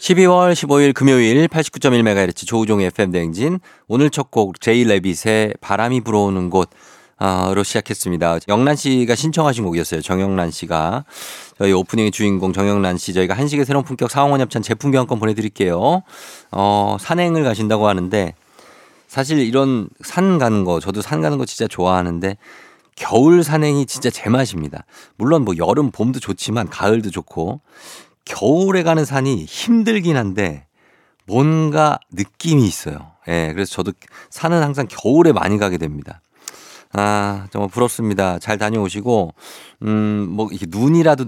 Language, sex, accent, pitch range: Korean, male, native, 95-135 Hz